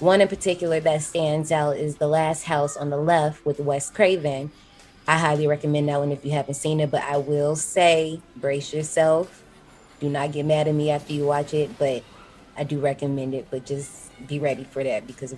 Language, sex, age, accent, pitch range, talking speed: English, female, 20-39, American, 140-165 Hz, 210 wpm